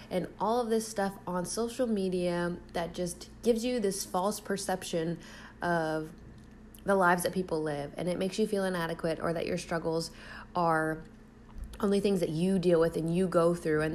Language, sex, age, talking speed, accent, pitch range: English, female, 20-39, 185 wpm, American, 165-195 Hz